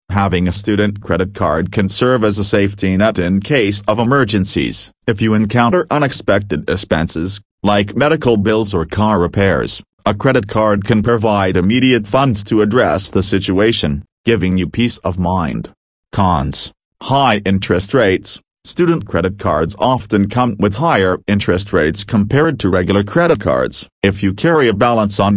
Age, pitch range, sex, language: 40-59, 95-115 Hz, male, English